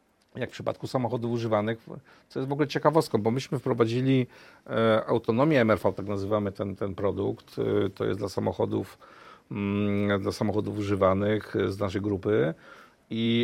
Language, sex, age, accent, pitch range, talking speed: Polish, male, 50-69, native, 105-125 Hz, 140 wpm